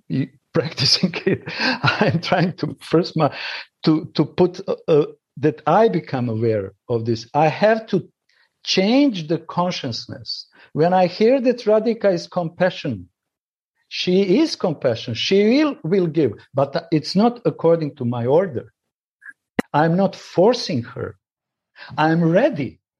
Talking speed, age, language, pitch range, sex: 135 wpm, 50-69, English, 140-185 Hz, male